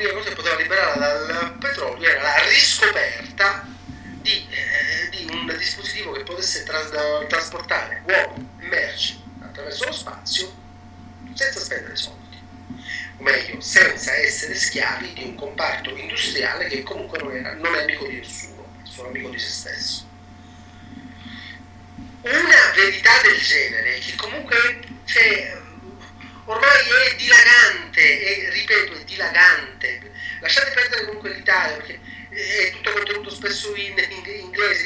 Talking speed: 130 wpm